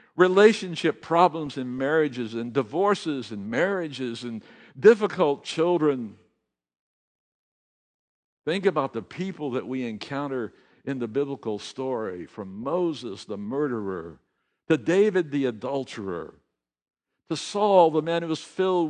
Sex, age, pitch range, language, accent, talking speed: male, 60-79, 105-175 Hz, English, American, 120 wpm